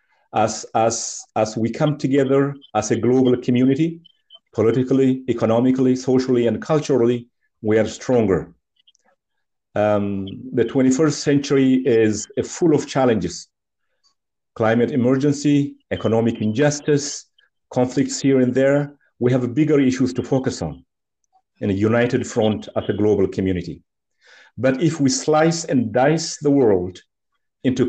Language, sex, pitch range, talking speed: Amharic, male, 110-140 Hz, 125 wpm